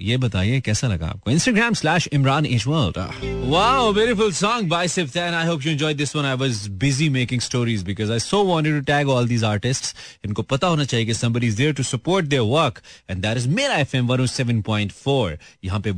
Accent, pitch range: native, 105-155 Hz